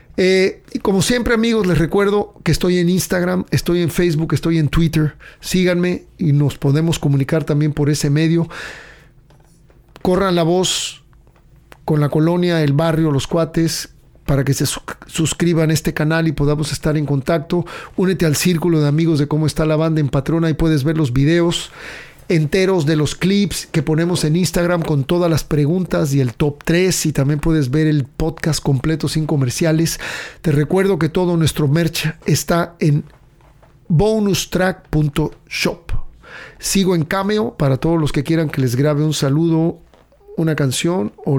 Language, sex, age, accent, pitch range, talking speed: English, male, 50-69, Mexican, 150-175 Hz, 165 wpm